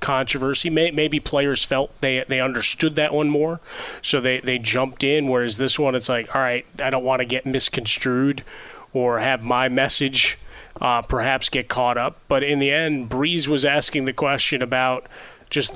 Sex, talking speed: male, 185 wpm